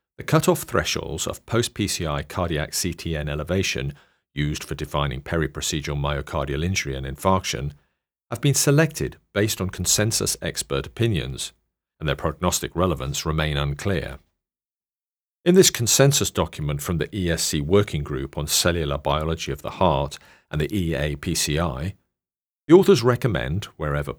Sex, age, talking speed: male, 40-59, 130 wpm